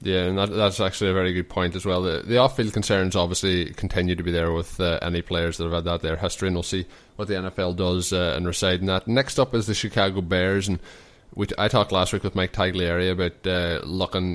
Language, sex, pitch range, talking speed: English, male, 90-100 Hz, 245 wpm